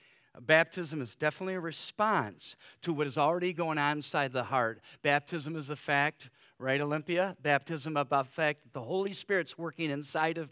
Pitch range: 130-160 Hz